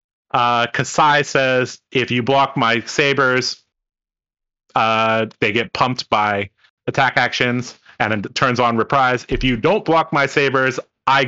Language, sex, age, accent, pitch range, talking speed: English, male, 30-49, American, 115-140 Hz, 145 wpm